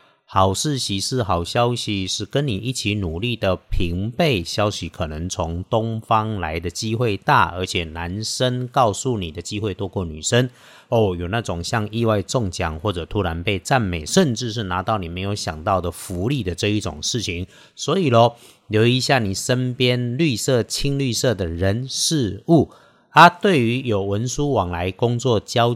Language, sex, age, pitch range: Chinese, male, 50-69, 95-130 Hz